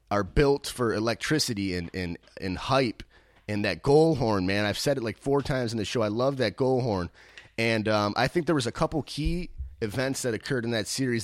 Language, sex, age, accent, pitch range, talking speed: English, male, 30-49, American, 105-140 Hz, 225 wpm